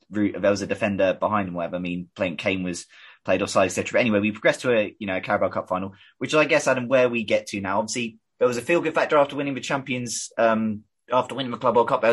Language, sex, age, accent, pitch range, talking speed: English, male, 20-39, British, 105-130 Hz, 270 wpm